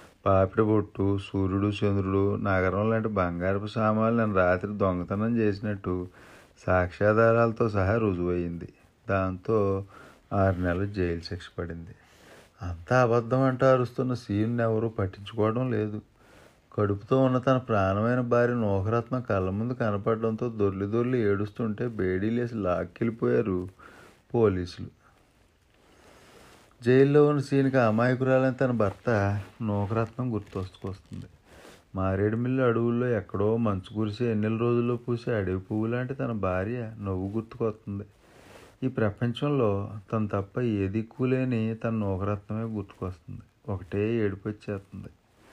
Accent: native